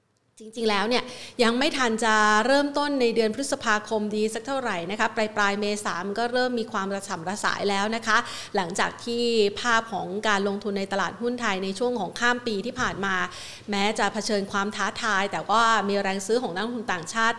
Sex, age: female, 30-49